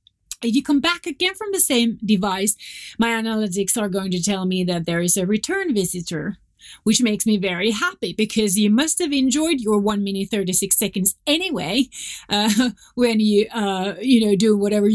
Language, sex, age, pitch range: English, female, 30-49, 195-260 Hz